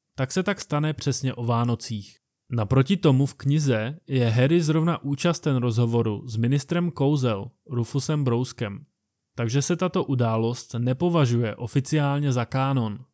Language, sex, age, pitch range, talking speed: Czech, male, 20-39, 115-140 Hz, 130 wpm